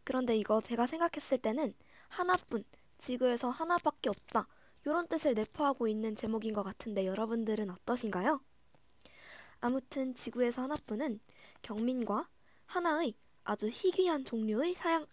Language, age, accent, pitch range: Korean, 20-39, native, 220-300 Hz